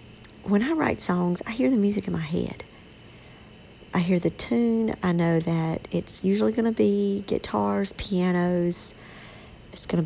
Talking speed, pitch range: 165 wpm, 170-215 Hz